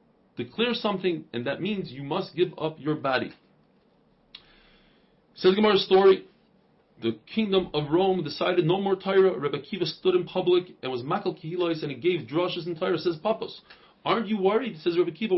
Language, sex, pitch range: English, male, 160-200 Hz